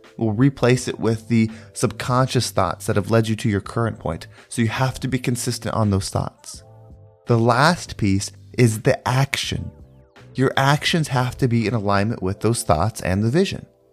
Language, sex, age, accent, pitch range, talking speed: English, male, 20-39, American, 110-140 Hz, 185 wpm